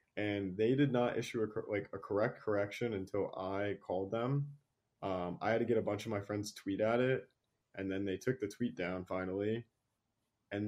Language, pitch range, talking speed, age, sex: English, 95-110 Hz, 200 wpm, 20-39, male